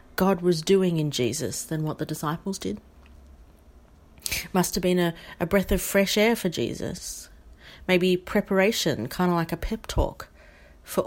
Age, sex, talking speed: 40-59, female, 165 wpm